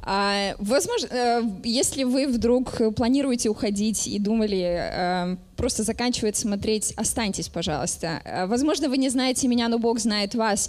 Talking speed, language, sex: 120 wpm, Russian, female